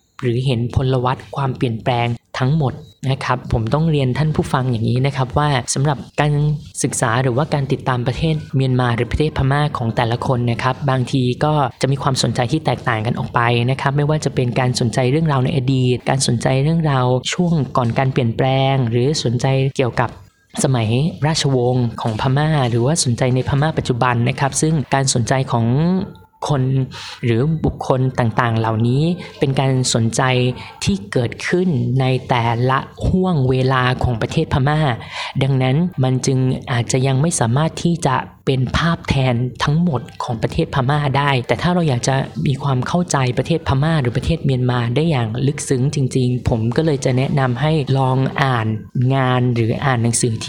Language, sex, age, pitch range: Thai, female, 20-39, 125-145 Hz